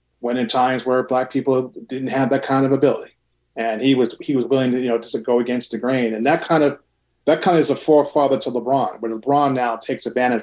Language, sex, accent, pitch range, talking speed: English, male, American, 115-140 Hz, 255 wpm